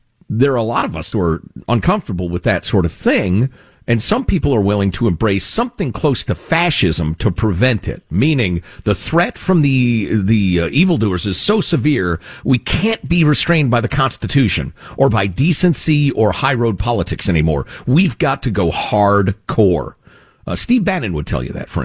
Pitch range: 95-145 Hz